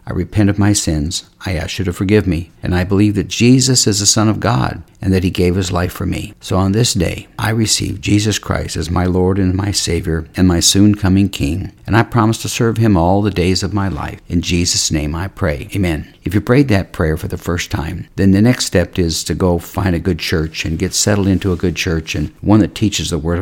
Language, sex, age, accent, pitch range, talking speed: English, male, 60-79, American, 85-105 Hz, 255 wpm